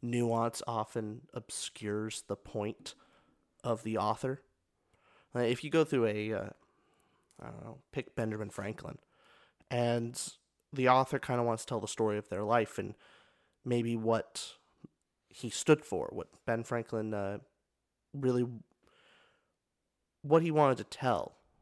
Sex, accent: male, American